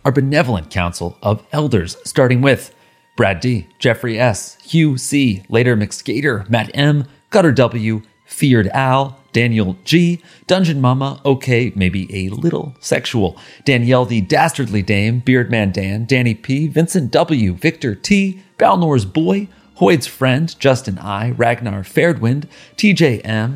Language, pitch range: English, 105-145 Hz